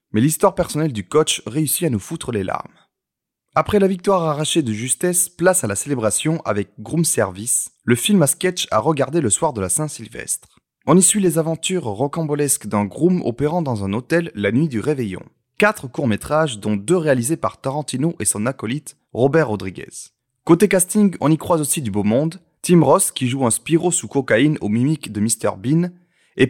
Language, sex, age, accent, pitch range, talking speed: French, male, 30-49, French, 120-175 Hz, 195 wpm